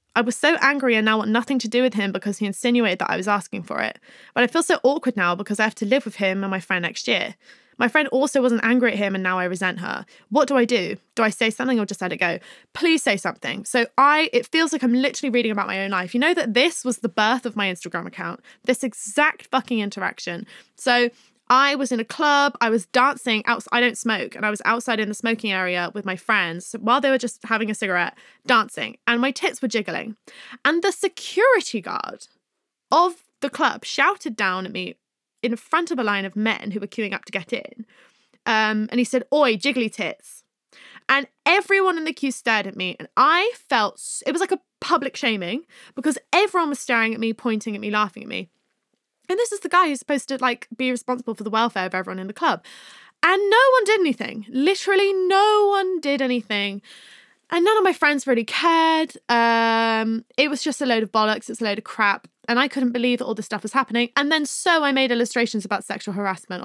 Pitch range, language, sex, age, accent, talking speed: 210-280 Hz, English, female, 20-39, British, 235 wpm